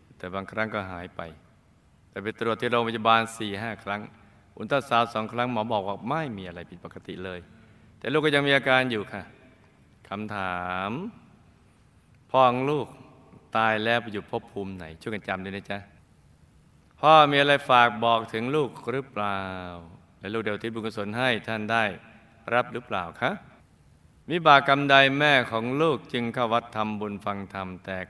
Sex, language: male, Thai